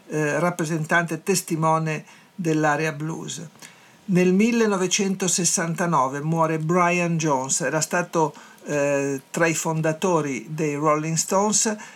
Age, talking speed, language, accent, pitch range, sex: 50-69, 95 wpm, Italian, native, 145-180 Hz, male